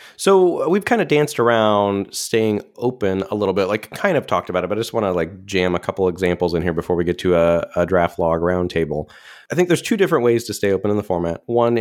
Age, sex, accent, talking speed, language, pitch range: 20-39, male, American, 260 wpm, English, 90-115 Hz